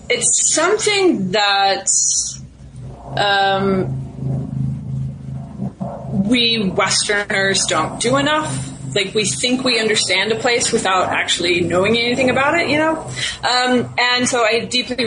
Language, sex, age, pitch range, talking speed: English, female, 20-39, 185-240 Hz, 115 wpm